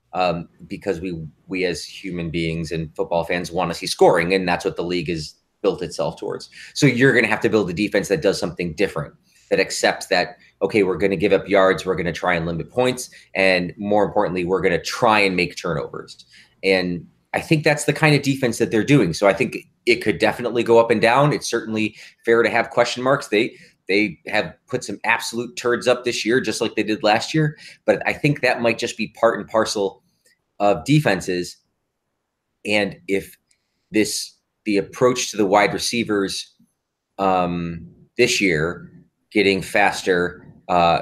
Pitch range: 90-120 Hz